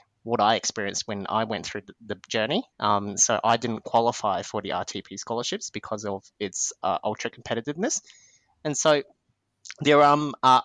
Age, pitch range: 30-49, 110-130 Hz